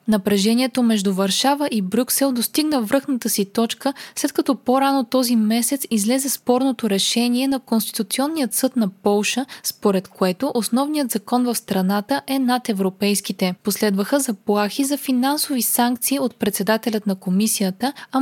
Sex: female